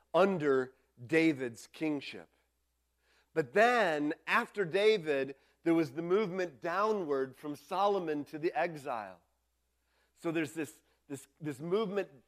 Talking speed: 110 wpm